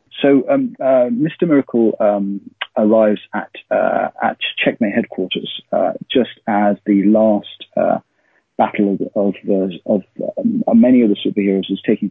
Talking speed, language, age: 150 wpm, English, 40-59